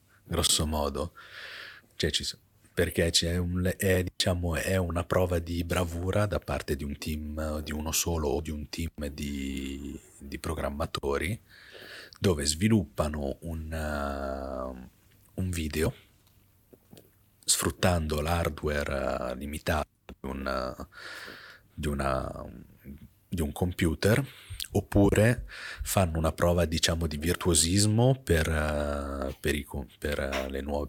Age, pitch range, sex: 40-59, 75-95 Hz, male